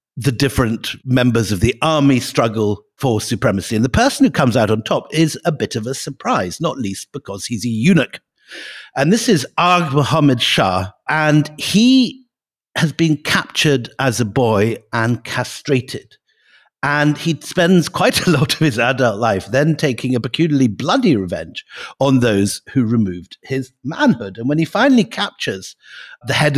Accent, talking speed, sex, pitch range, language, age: British, 165 wpm, male, 110-145 Hz, English, 50-69